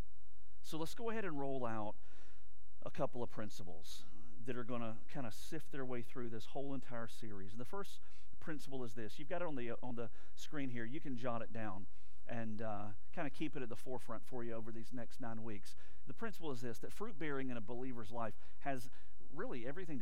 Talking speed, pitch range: 220 wpm, 105-140 Hz